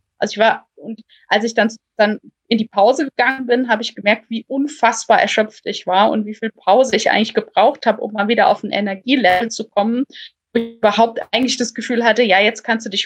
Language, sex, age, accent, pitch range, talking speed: German, female, 20-39, German, 210-245 Hz, 225 wpm